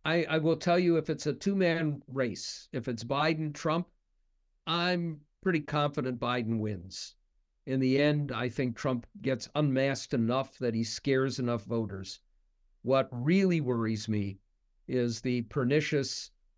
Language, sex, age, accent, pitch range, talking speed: English, male, 50-69, American, 120-150 Hz, 145 wpm